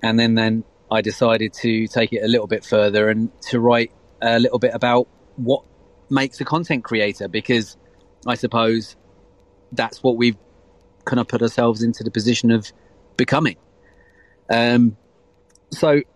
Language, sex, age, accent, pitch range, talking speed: English, male, 30-49, British, 100-125 Hz, 150 wpm